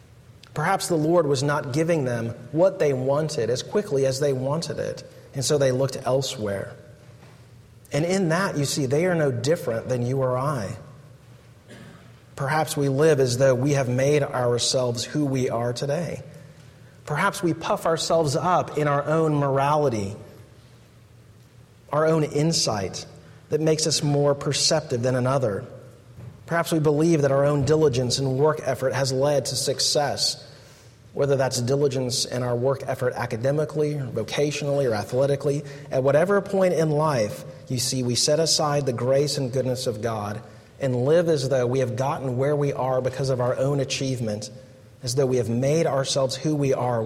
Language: English